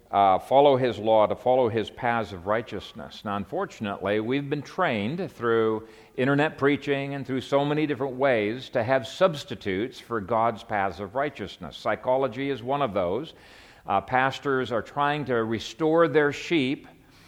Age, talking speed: 50-69, 155 wpm